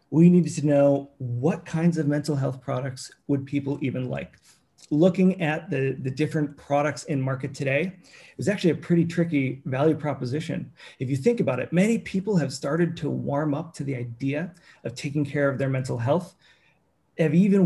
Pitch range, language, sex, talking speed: 140-175 Hz, English, male, 190 wpm